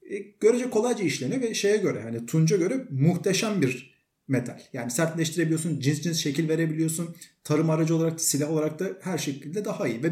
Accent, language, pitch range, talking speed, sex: native, Turkish, 140-195 Hz, 180 wpm, male